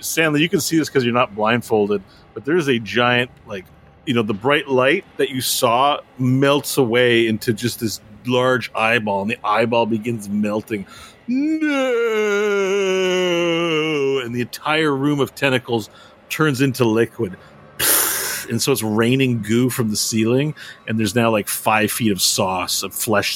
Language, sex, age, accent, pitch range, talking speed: English, male, 40-59, American, 115-155 Hz, 160 wpm